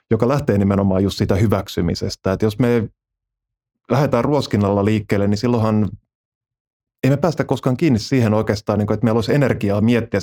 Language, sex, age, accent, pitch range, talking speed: Finnish, male, 20-39, native, 100-120 Hz, 155 wpm